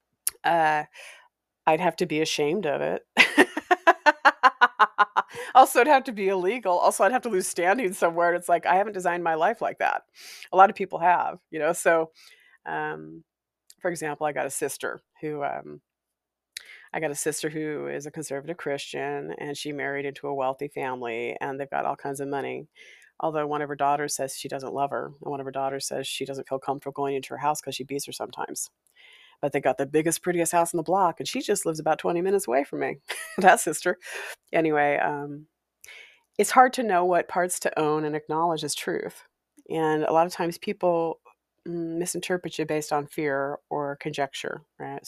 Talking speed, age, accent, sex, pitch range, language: 200 wpm, 40-59, American, female, 140-180 Hz, English